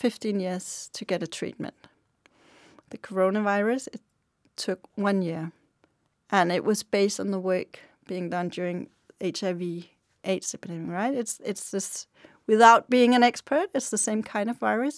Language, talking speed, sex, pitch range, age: Danish, 150 wpm, female, 190-235 Hz, 30-49